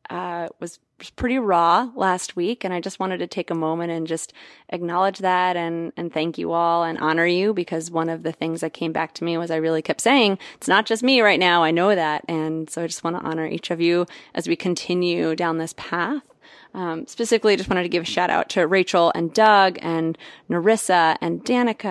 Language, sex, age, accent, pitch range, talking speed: English, female, 30-49, American, 165-190 Hz, 225 wpm